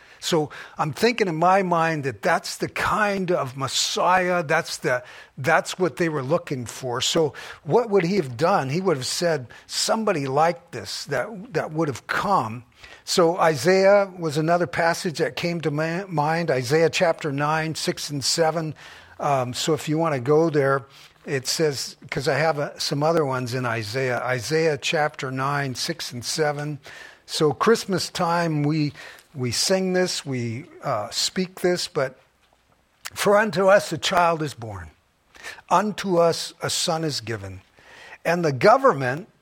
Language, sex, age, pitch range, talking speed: English, male, 50-69, 135-180 Hz, 165 wpm